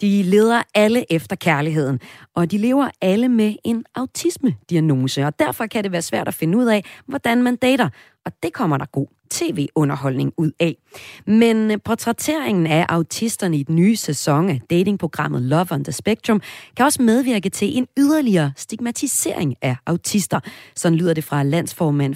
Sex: female